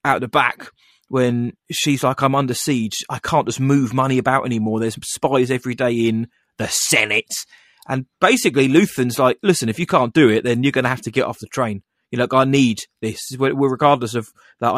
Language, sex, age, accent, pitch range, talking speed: English, male, 30-49, British, 115-135 Hz, 205 wpm